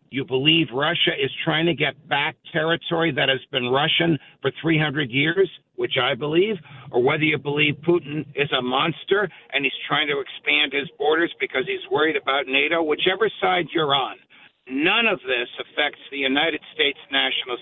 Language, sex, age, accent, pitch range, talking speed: English, male, 60-79, American, 150-210 Hz, 175 wpm